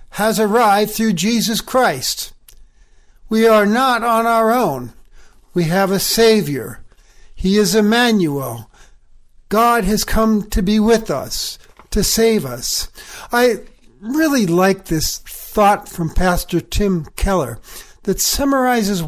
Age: 60-79